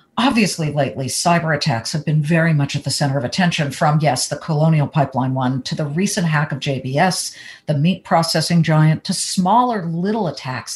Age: 50-69